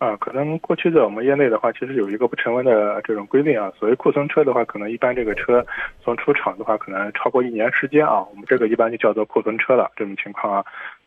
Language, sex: Chinese, male